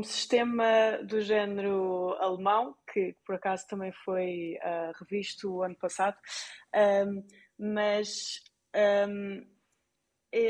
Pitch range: 195-225 Hz